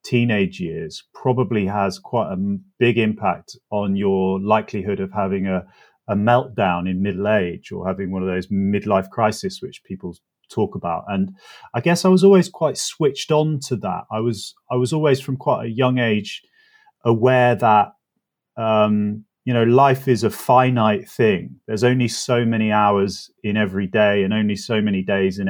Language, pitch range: English, 105-135 Hz